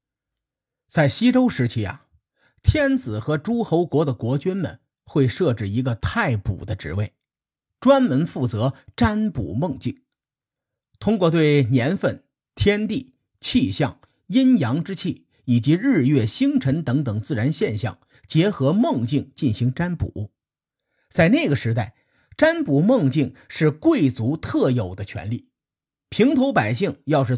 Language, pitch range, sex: Chinese, 115-160 Hz, male